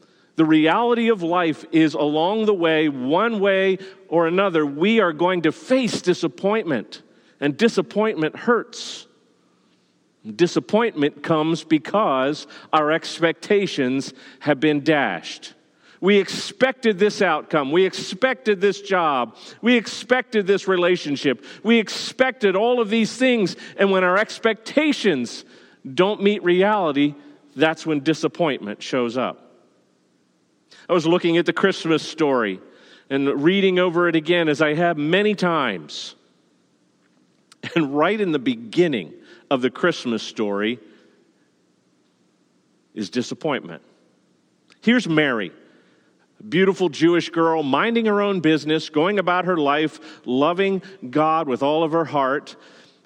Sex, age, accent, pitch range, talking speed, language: male, 40-59, American, 150-200 Hz, 120 wpm, English